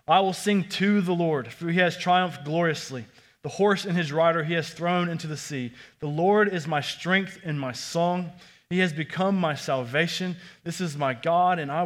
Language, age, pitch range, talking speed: English, 20-39, 150-205 Hz, 205 wpm